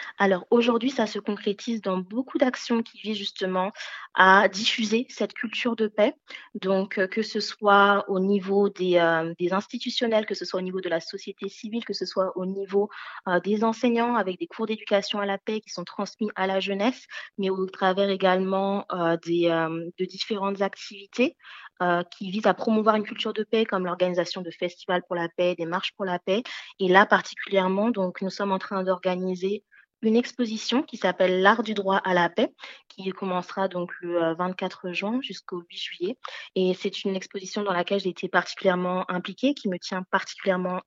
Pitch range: 185-220 Hz